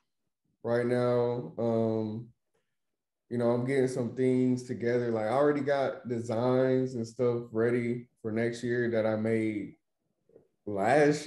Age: 20-39